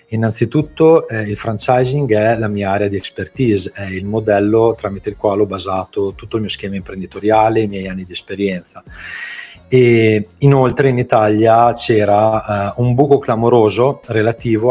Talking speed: 150 wpm